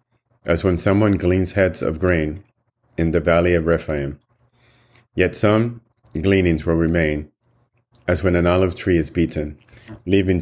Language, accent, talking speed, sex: English, American, 145 wpm, male